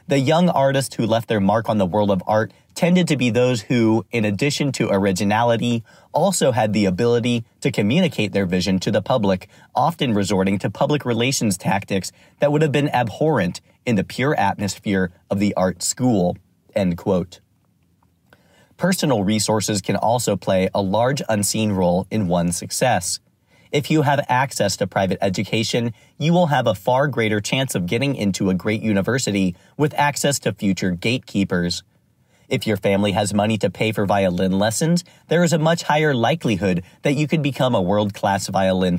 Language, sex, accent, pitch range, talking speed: English, male, American, 95-140 Hz, 170 wpm